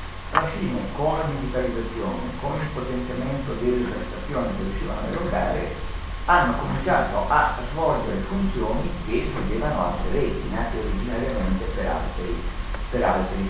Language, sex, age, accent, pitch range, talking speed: Italian, male, 40-59, native, 85-120 Hz, 120 wpm